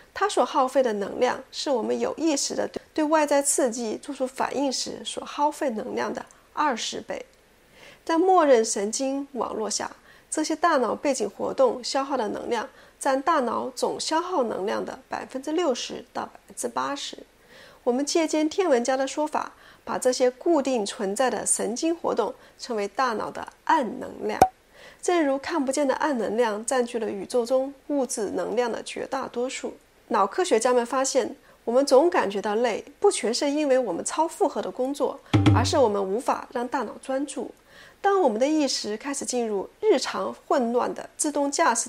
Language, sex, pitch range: Chinese, female, 245-320 Hz